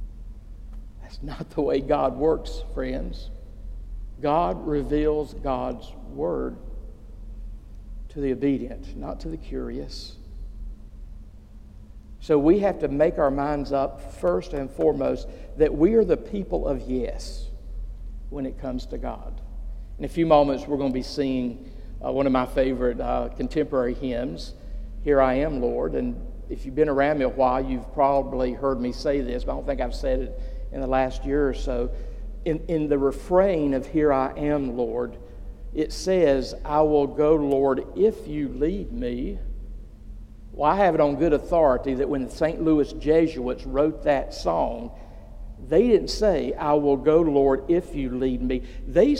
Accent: American